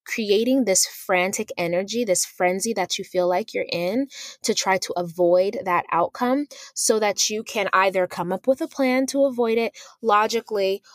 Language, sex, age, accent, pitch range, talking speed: English, female, 20-39, American, 175-220 Hz, 175 wpm